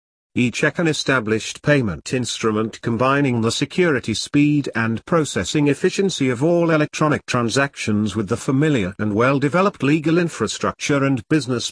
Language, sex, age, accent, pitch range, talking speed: English, male, 50-69, British, 115-150 Hz, 130 wpm